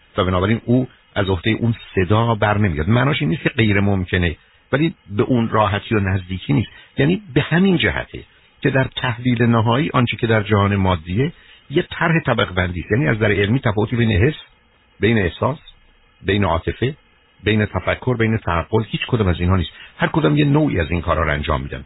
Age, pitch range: 60-79, 95-125 Hz